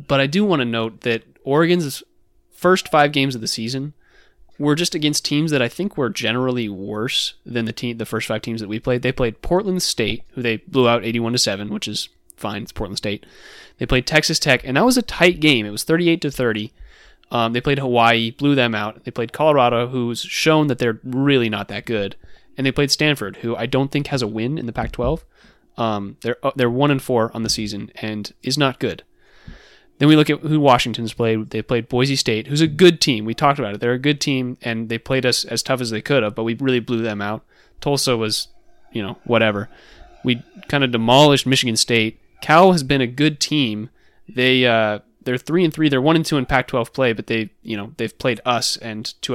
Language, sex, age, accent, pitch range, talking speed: English, male, 20-39, American, 115-145 Hz, 225 wpm